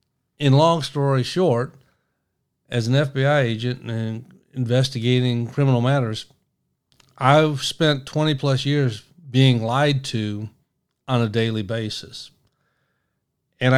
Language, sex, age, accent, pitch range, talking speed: English, male, 50-69, American, 120-145 Hz, 105 wpm